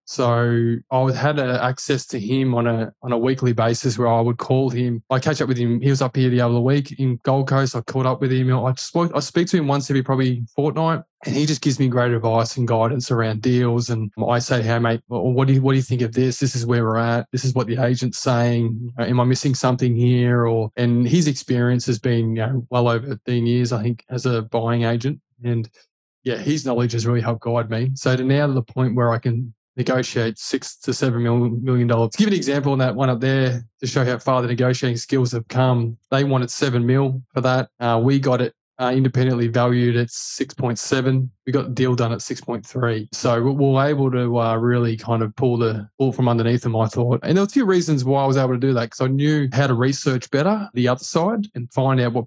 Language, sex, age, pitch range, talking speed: English, male, 20-39, 120-135 Hz, 250 wpm